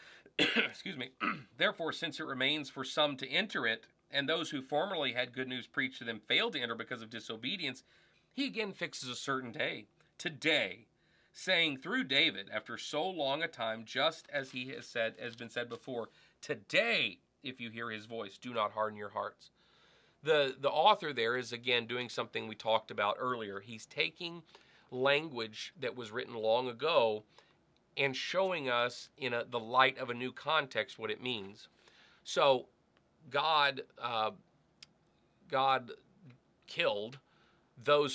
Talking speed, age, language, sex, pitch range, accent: 160 wpm, 40-59, English, male, 115-140 Hz, American